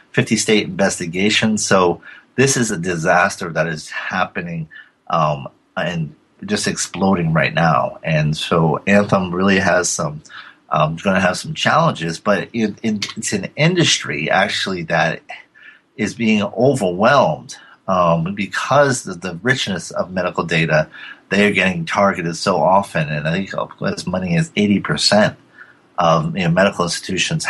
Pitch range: 85-115 Hz